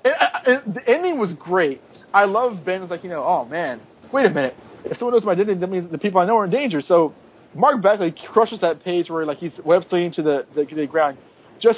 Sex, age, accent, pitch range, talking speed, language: male, 20-39, American, 155-220 Hz, 250 wpm, English